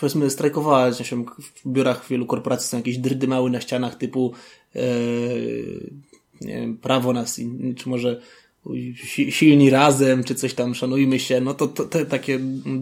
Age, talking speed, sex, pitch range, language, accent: 20-39, 150 wpm, male, 130-165 Hz, Polish, native